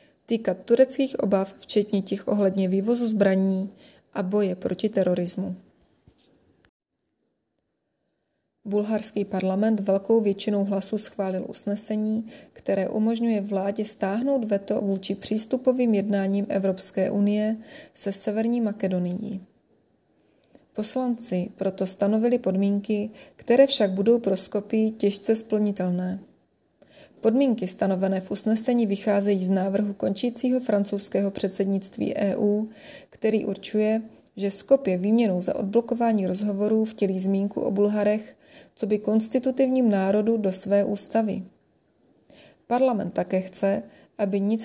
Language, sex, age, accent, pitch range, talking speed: Czech, female, 20-39, native, 195-220 Hz, 105 wpm